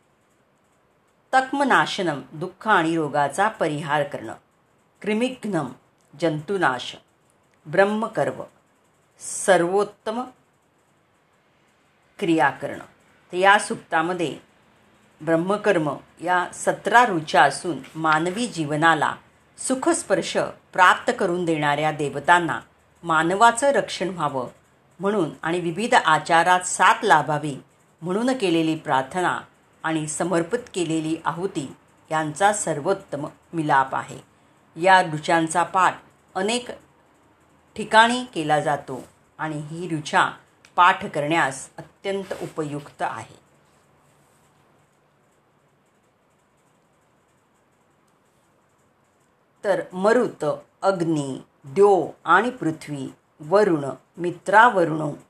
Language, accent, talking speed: Marathi, native, 75 wpm